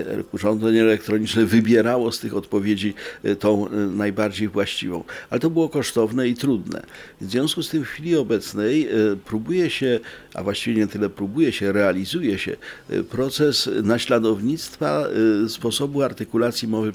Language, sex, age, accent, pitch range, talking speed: Polish, male, 50-69, native, 100-120 Hz, 130 wpm